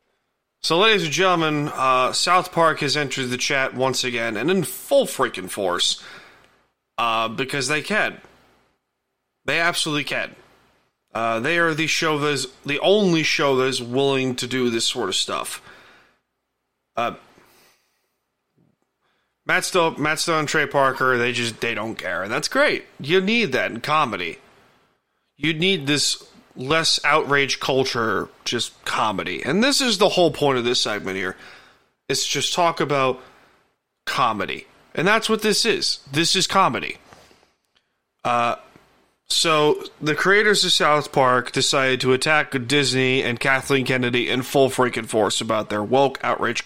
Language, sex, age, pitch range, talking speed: English, male, 30-49, 130-165 Hz, 150 wpm